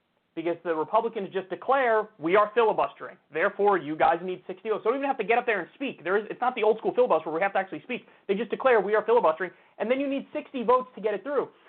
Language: English